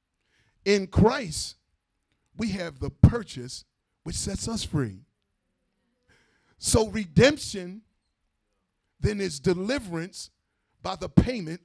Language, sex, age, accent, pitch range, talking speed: English, male, 40-59, American, 130-220 Hz, 95 wpm